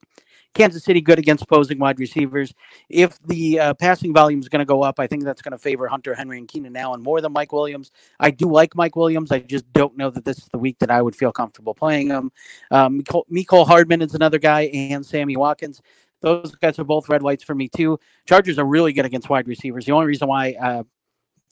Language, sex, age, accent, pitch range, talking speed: English, male, 40-59, American, 130-155 Hz, 230 wpm